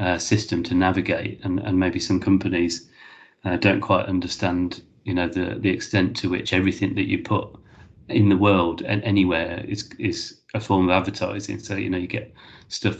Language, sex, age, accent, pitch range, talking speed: English, male, 30-49, British, 90-105 Hz, 190 wpm